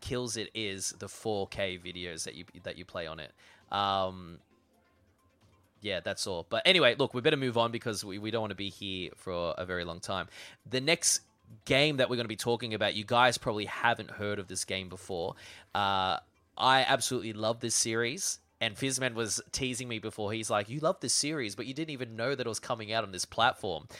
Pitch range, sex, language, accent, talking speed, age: 105-130 Hz, male, English, Australian, 220 wpm, 20-39